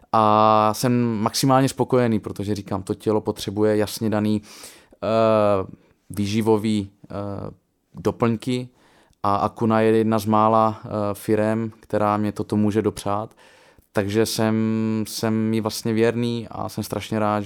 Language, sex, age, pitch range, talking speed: Czech, male, 20-39, 100-110 Hz, 130 wpm